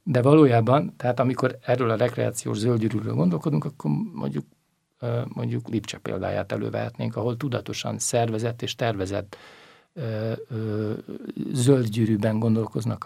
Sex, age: male, 60-79